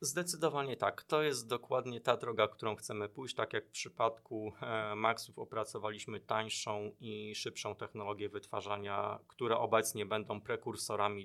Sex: male